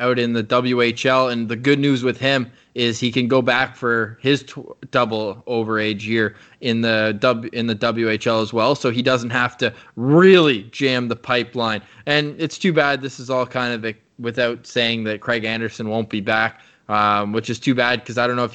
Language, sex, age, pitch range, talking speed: English, male, 20-39, 115-135 Hz, 215 wpm